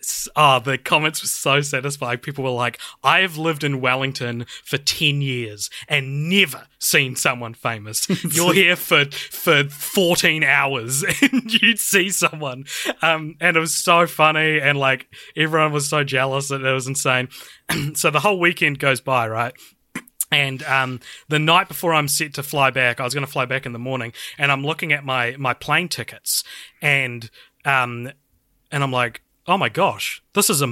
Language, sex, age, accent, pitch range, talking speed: English, male, 20-39, Australian, 130-160 Hz, 180 wpm